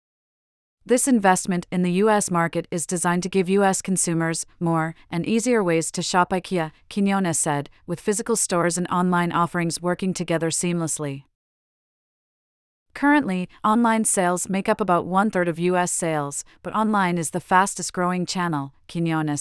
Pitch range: 165-200 Hz